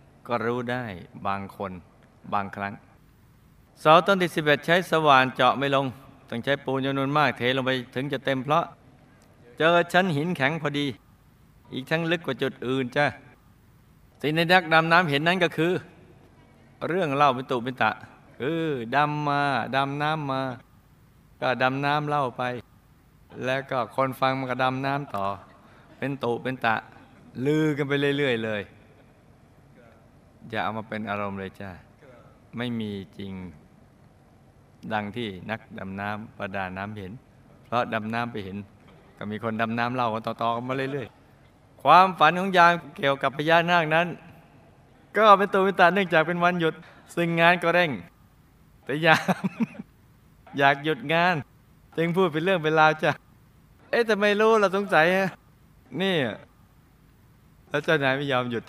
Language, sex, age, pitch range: Thai, male, 20-39, 120-160 Hz